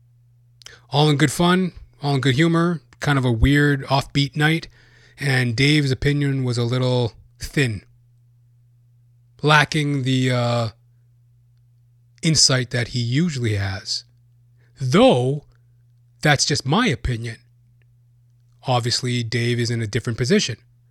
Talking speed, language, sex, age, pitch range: 120 wpm, English, male, 30-49, 120-145 Hz